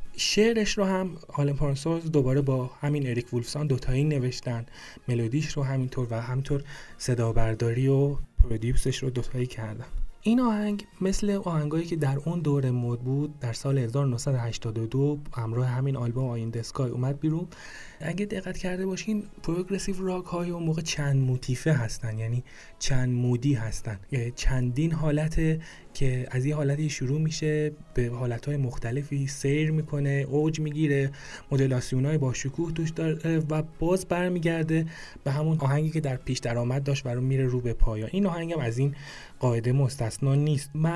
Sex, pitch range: male, 125-155 Hz